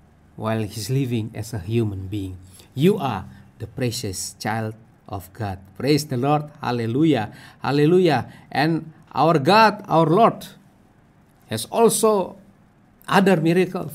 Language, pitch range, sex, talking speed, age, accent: English, 145-195 Hz, male, 120 wpm, 50-69, Indonesian